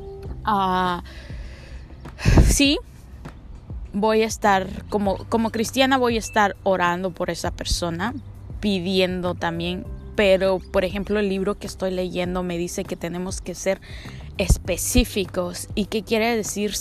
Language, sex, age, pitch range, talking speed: Spanish, female, 20-39, 180-235 Hz, 130 wpm